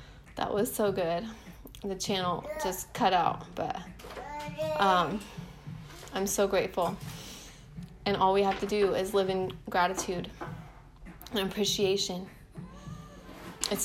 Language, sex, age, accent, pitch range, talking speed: English, female, 20-39, American, 195-240 Hz, 115 wpm